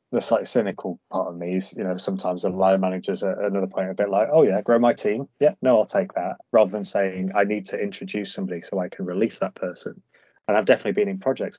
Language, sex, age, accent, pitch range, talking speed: English, male, 20-39, British, 95-105 Hz, 255 wpm